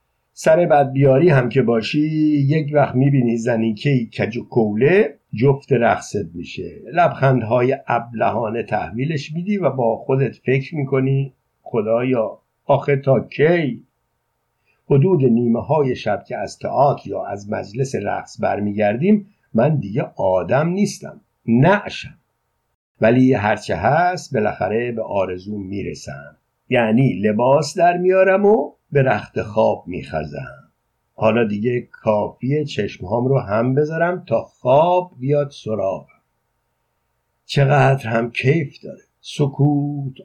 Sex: male